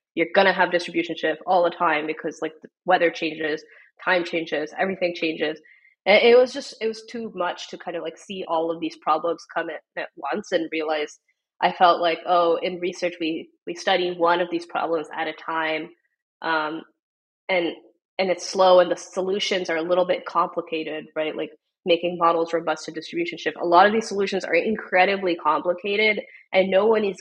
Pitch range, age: 160-185 Hz, 20-39